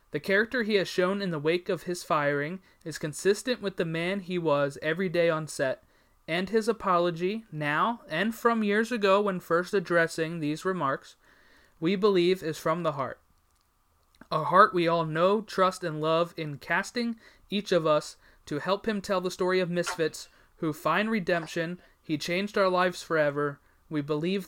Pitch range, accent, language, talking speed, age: 155-190 Hz, American, English, 175 wpm, 30-49